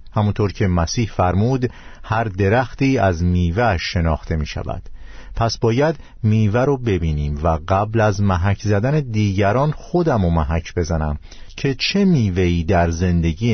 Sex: male